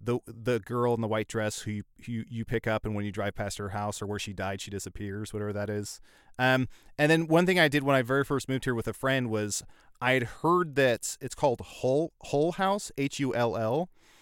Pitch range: 110-140 Hz